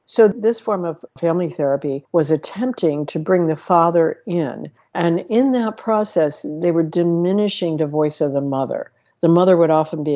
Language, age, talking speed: English, 60-79, 175 wpm